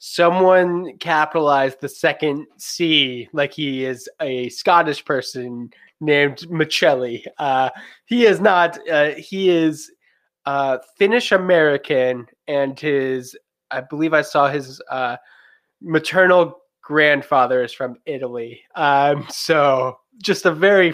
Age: 20-39